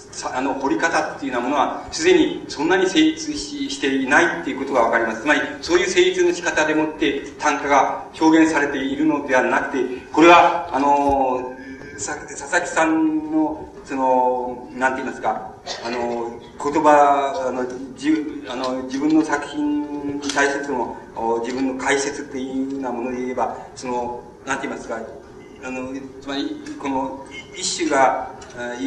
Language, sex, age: Japanese, male, 40-59